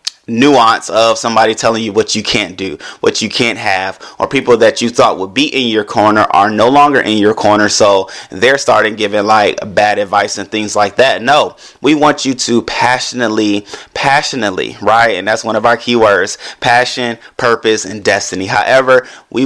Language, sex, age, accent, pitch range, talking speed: English, male, 30-49, American, 105-125 Hz, 185 wpm